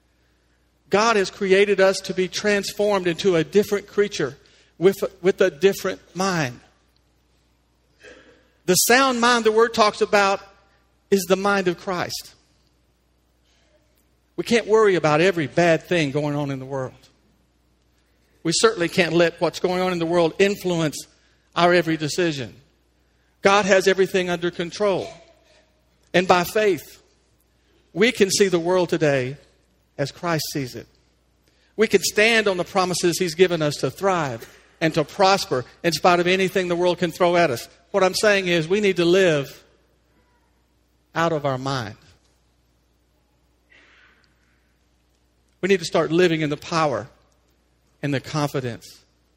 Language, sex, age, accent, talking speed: English, male, 50-69, American, 145 wpm